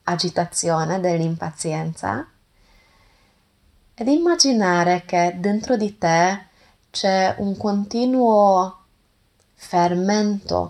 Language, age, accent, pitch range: Italian, 20-39, native, 155-190 Hz